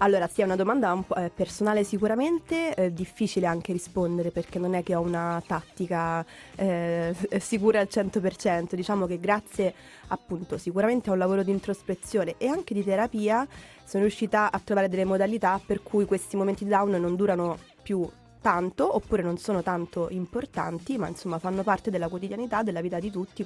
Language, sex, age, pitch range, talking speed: Italian, female, 20-39, 180-205 Hz, 175 wpm